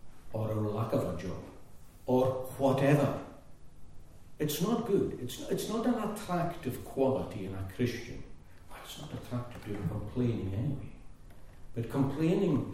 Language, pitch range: English, 95-135 Hz